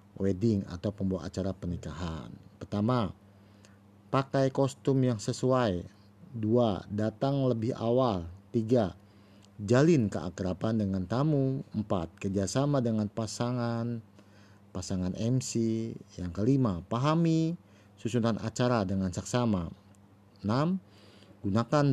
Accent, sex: native, male